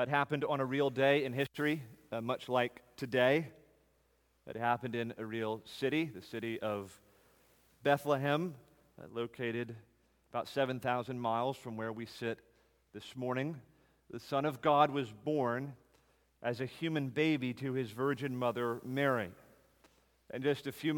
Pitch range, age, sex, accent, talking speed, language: 120-150 Hz, 40-59, male, American, 150 wpm, English